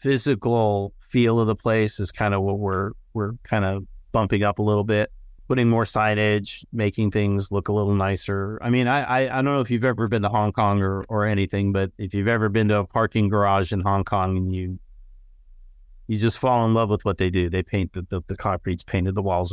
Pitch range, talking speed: 95-115 Hz, 235 wpm